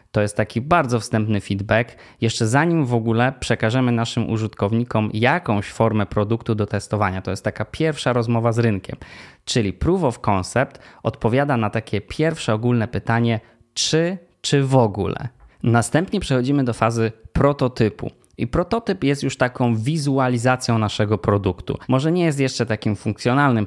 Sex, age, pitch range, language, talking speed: male, 20-39, 105-130 Hz, Polish, 145 wpm